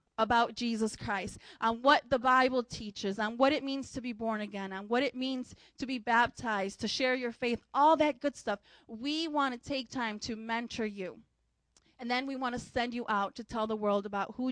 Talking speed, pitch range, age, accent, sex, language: 220 wpm, 230-280 Hz, 20-39, American, female, English